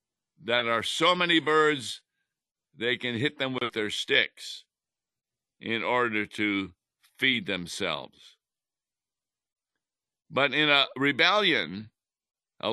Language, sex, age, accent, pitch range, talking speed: English, male, 60-79, American, 115-150 Hz, 105 wpm